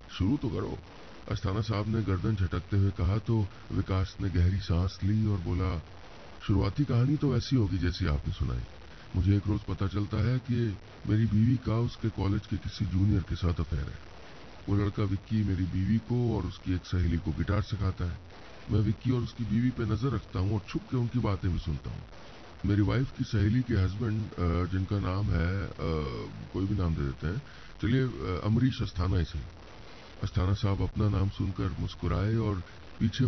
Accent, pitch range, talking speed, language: native, 90-115 Hz, 185 wpm, Hindi